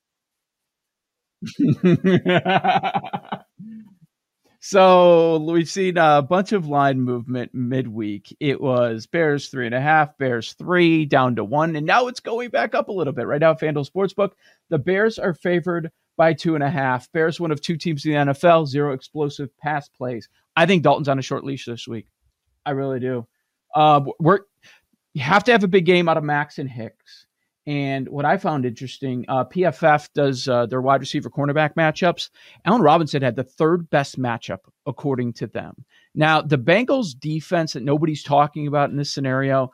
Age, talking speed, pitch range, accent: 40-59, 175 wpm, 130-170 Hz, American